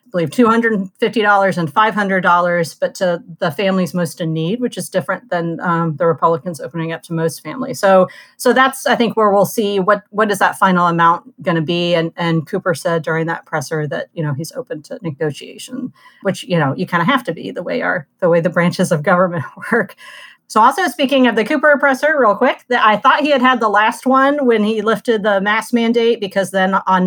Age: 40-59